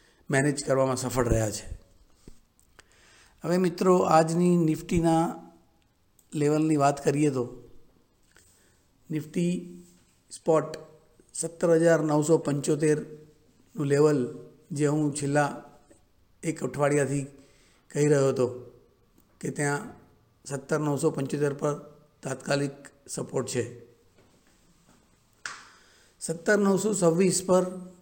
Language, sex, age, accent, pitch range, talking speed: English, male, 50-69, Indian, 130-165 Hz, 50 wpm